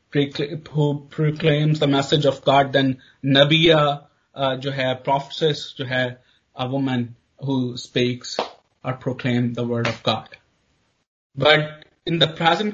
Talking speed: 125 wpm